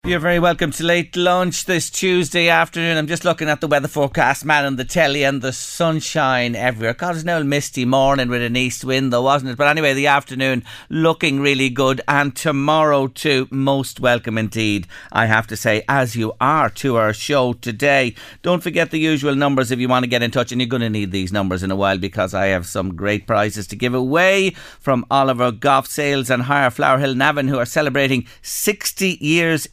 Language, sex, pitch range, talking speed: English, male, 120-155 Hz, 210 wpm